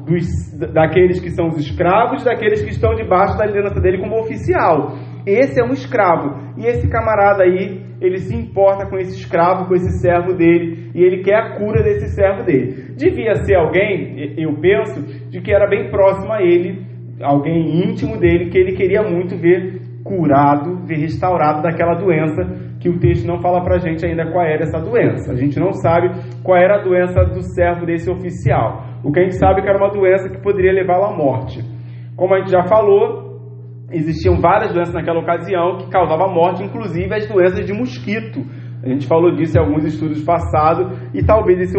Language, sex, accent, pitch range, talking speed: Portuguese, male, Brazilian, 140-185 Hz, 190 wpm